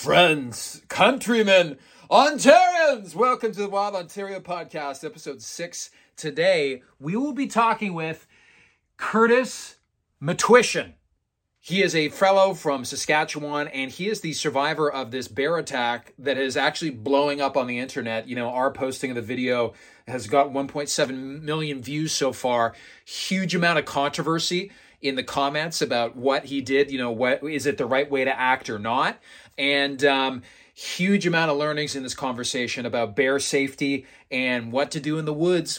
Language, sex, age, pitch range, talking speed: English, male, 30-49, 130-165 Hz, 165 wpm